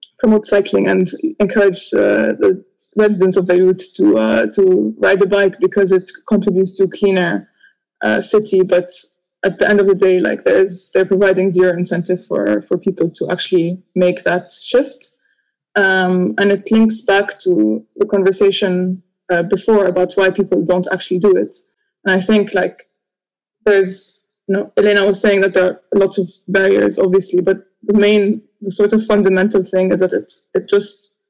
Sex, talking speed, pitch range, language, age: female, 175 wpm, 185-205 Hz, English, 20-39